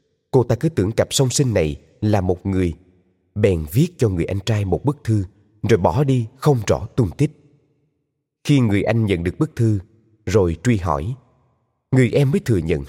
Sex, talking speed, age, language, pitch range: male, 195 wpm, 20-39, Vietnamese, 95-135 Hz